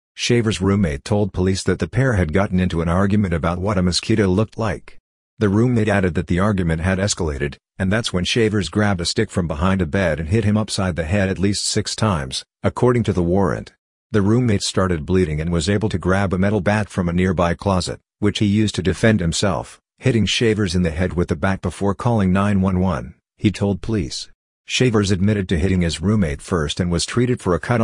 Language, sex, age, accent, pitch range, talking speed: English, male, 50-69, American, 90-105 Hz, 215 wpm